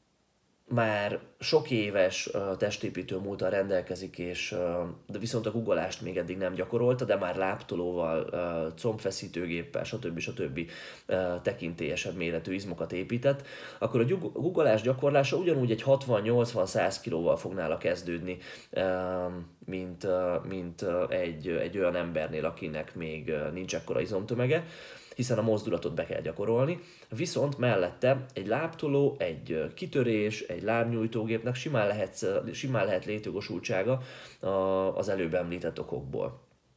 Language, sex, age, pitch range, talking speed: Hungarian, male, 20-39, 90-125 Hz, 110 wpm